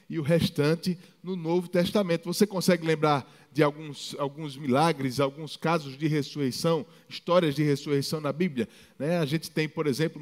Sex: male